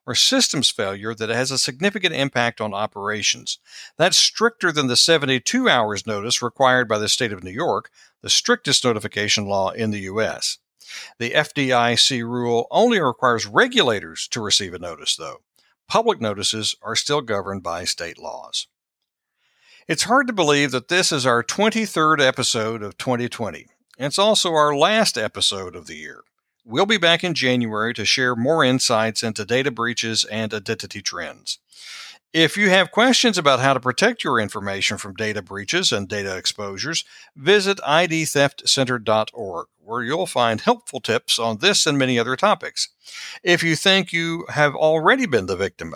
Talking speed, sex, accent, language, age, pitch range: 160 wpm, male, American, English, 60-79, 110-160 Hz